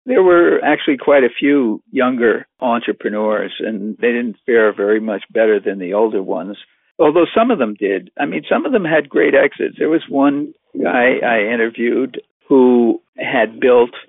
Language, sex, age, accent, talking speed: English, male, 60-79, American, 175 wpm